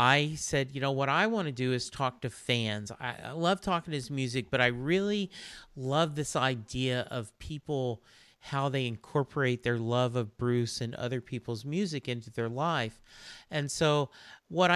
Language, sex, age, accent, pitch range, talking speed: English, male, 40-59, American, 120-155 Hz, 185 wpm